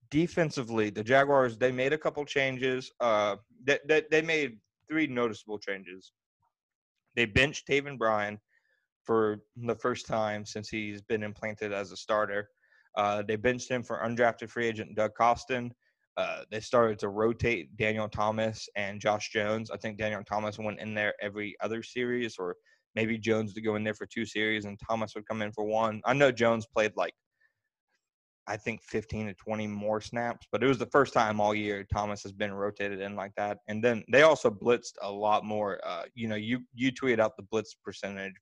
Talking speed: 190 wpm